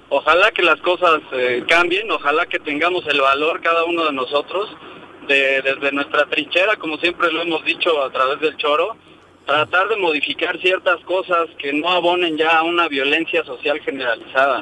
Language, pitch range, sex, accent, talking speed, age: Spanish, 150-205 Hz, male, Mexican, 170 wpm, 40-59